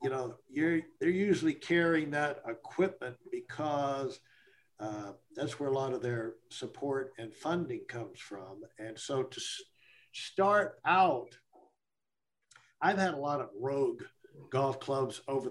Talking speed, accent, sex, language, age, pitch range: 140 wpm, American, male, English, 60-79, 135-190 Hz